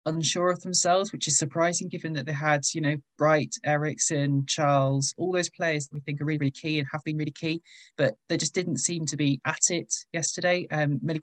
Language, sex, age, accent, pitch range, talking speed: English, male, 20-39, British, 145-160 Hz, 220 wpm